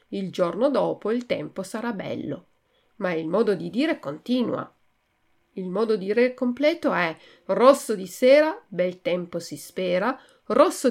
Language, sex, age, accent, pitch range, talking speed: Italian, female, 40-59, native, 180-260 Hz, 150 wpm